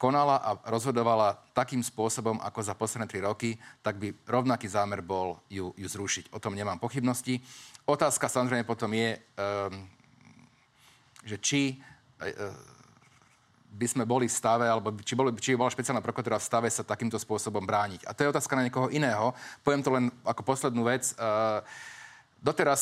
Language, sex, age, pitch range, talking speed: Slovak, male, 40-59, 105-125 Hz, 165 wpm